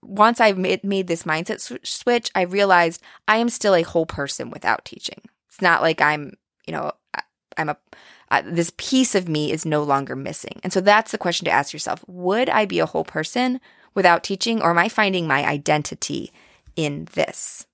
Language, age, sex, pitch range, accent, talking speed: English, 20-39, female, 165-245 Hz, American, 195 wpm